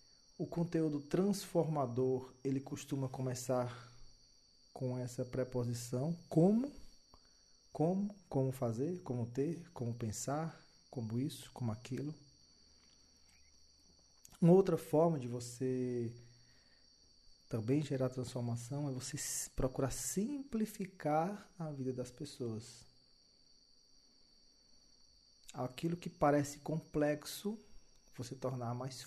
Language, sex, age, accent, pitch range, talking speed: Portuguese, male, 40-59, Brazilian, 120-150 Hz, 90 wpm